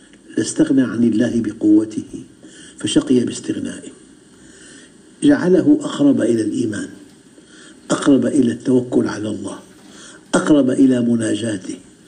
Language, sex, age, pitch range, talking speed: Arabic, male, 60-79, 275-315 Hz, 90 wpm